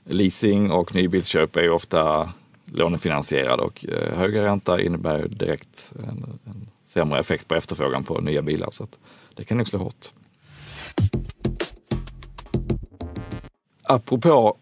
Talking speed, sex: 125 wpm, male